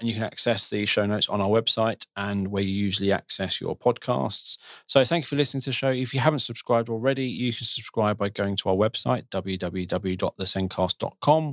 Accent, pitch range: British, 100-130 Hz